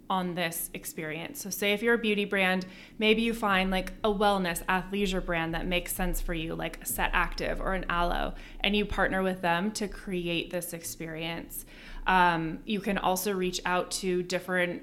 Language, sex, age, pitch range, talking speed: English, female, 20-39, 175-205 Hz, 185 wpm